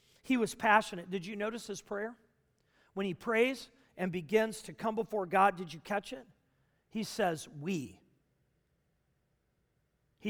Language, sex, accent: English, male, American